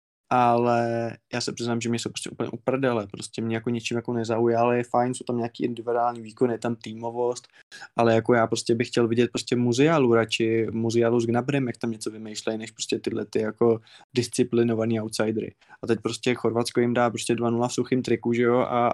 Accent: native